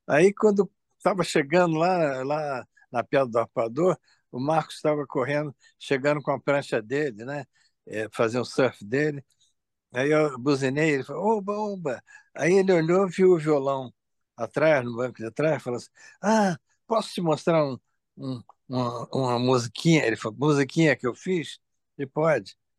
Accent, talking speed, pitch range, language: Brazilian, 165 wpm, 120-160 Hz, Portuguese